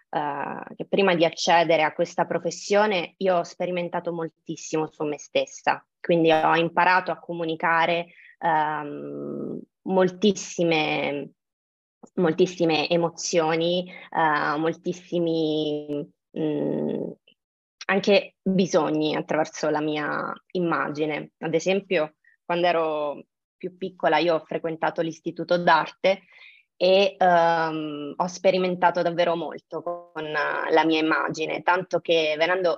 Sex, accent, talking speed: female, native, 100 wpm